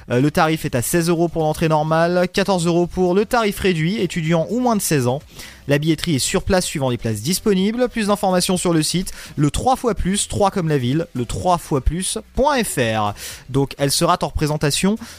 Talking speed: 200 wpm